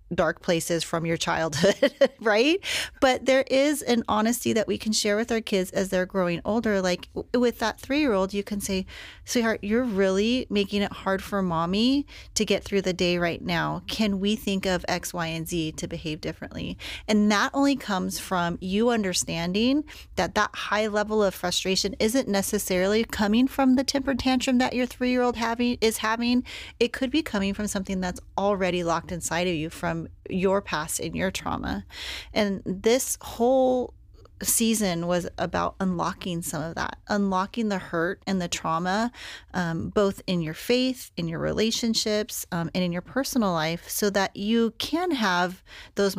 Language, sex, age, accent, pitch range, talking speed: English, female, 30-49, American, 175-225 Hz, 175 wpm